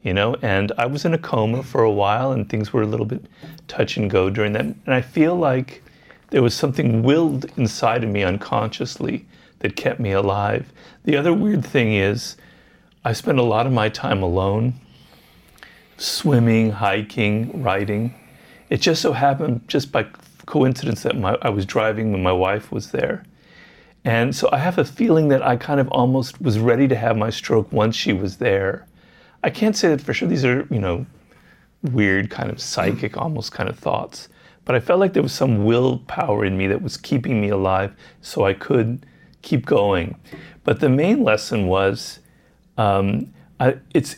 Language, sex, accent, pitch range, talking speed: English, male, American, 100-130 Hz, 185 wpm